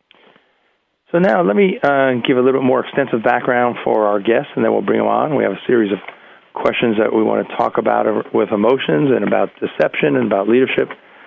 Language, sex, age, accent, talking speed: English, male, 40-59, American, 220 wpm